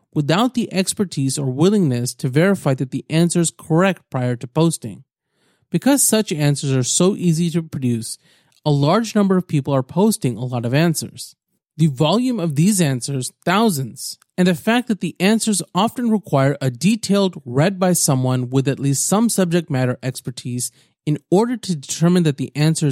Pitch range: 135-190 Hz